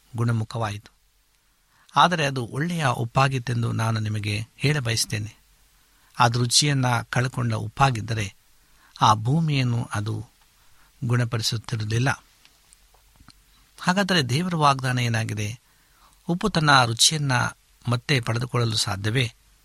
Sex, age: male, 60-79